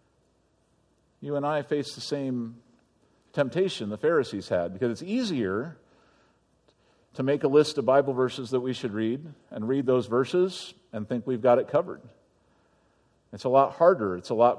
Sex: male